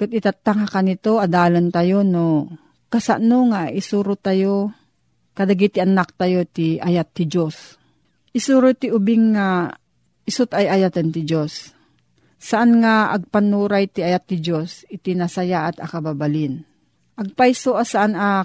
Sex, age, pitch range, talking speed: female, 40-59, 175-220 Hz, 135 wpm